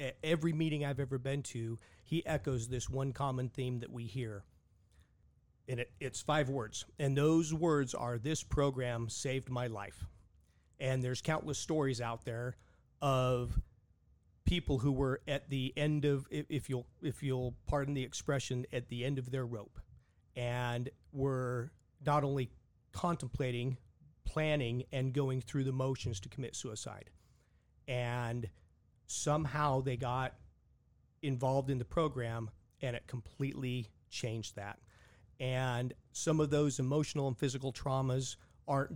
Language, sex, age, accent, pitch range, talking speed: English, male, 40-59, American, 115-140 Hz, 140 wpm